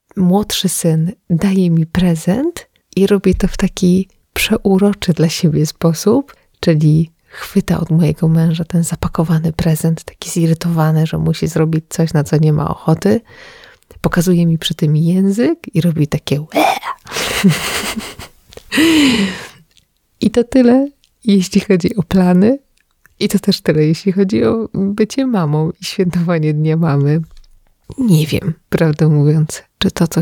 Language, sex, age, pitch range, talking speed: English, female, 30-49, 160-195 Hz, 135 wpm